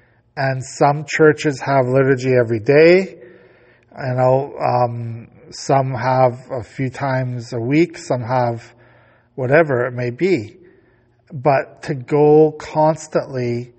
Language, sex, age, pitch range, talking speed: English, male, 50-69, 120-145 Hz, 115 wpm